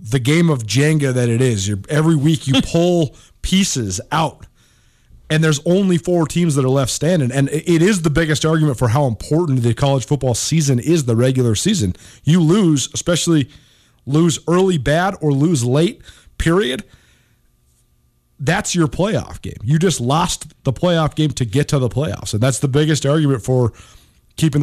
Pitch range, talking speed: 115-155 Hz, 175 wpm